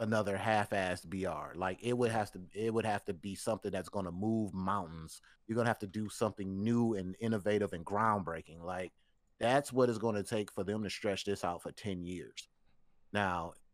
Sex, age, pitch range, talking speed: male, 30-49, 95-115 Hz, 210 wpm